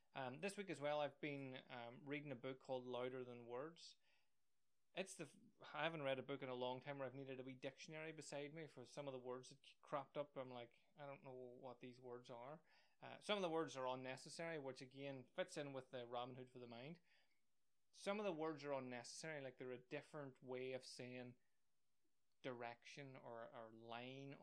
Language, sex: English, male